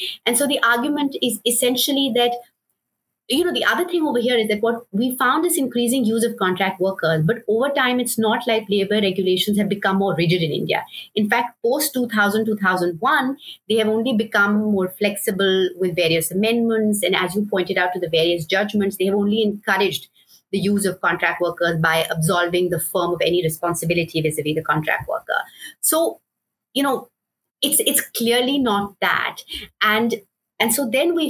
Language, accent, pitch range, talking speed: English, Indian, 190-245 Hz, 180 wpm